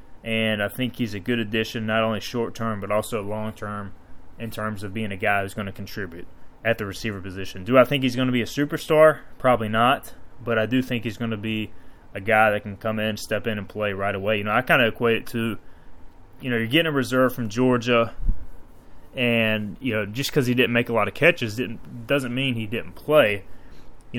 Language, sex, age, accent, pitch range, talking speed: English, male, 20-39, American, 100-120 Hz, 230 wpm